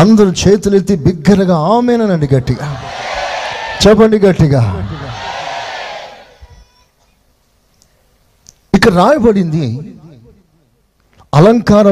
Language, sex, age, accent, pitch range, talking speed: Telugu, male, 50-69, native, 125-190 Hz, 50 wpm